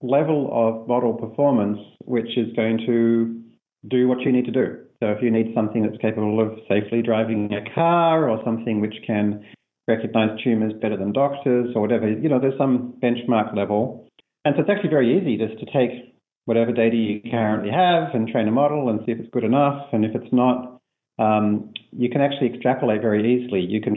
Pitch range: 105-125 Hz